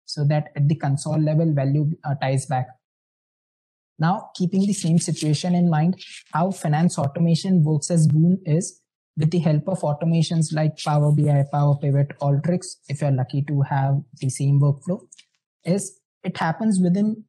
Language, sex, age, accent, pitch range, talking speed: English, male, 20-39, Indian, 140-165 Hz, 165 wpm